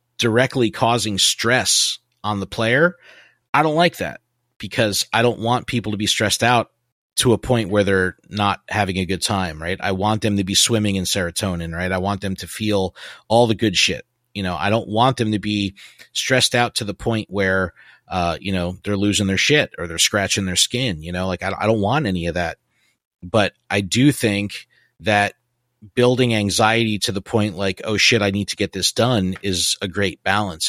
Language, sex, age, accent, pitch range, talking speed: English, male, 30-49, American, 95-115 Hz, 205 wpm